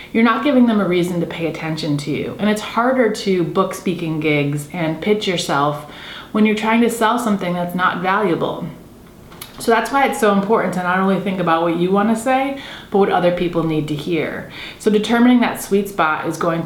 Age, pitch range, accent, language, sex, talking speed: 30-49, 165-220 Hz, American, English, female, 215 wpm